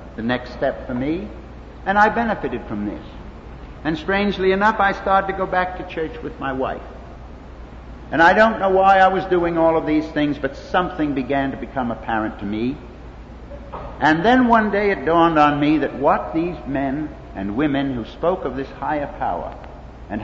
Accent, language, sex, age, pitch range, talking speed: American, English, male, 60-79, 115-175 Hz, 190 wpm